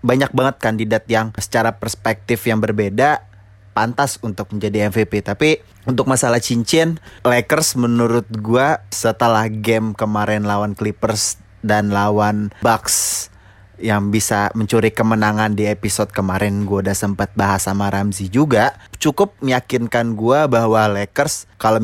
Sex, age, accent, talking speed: male, 20-39, native, 130 wpm